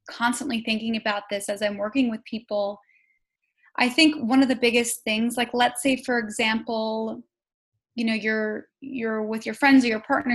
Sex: female